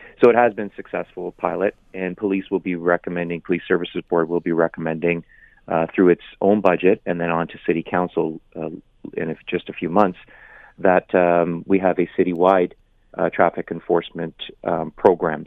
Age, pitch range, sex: 30-49, 85-95 Hz, male